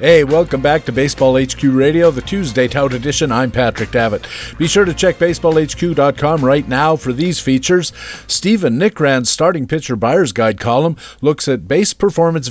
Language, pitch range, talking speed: English, 130-165 Hz, 170 wpm